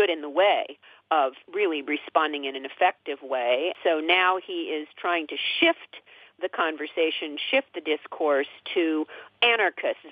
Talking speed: 140 wpm